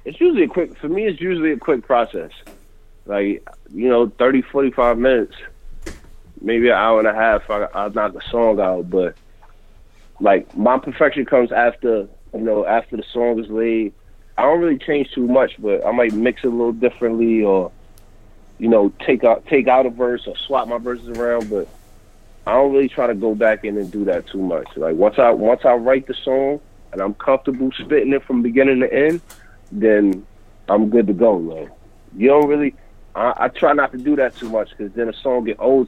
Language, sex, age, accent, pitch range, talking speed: English, male, 30-49, American, 105-135 Hz, 210 wpm